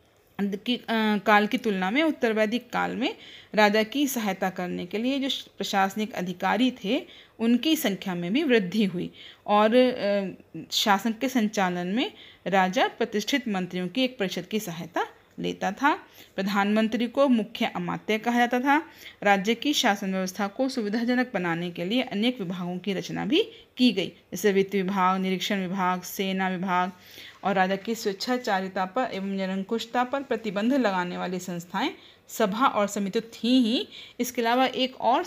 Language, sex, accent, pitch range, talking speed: Hindi, female, native, 190-250 Hz, 155 wpm